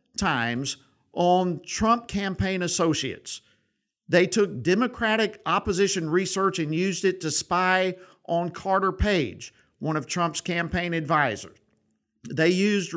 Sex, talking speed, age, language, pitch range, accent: male, 115 wpm, 50-69, English, 155-195 Hz, American